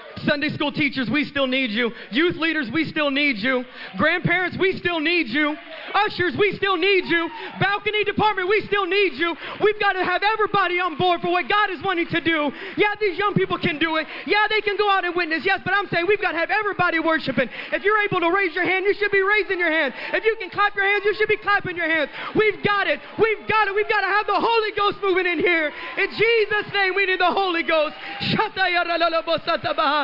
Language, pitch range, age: English, 260-380 Hz, 20-39